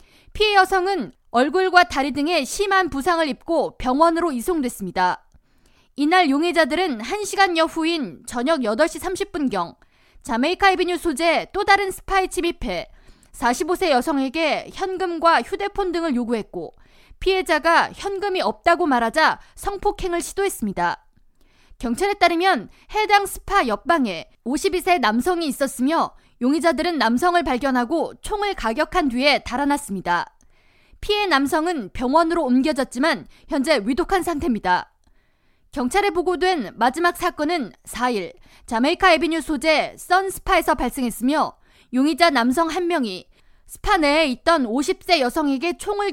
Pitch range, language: 265-360 Hz, Korean